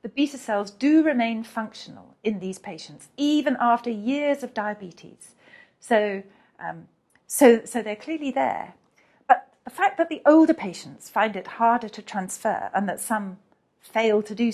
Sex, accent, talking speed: female, British, 155 wpm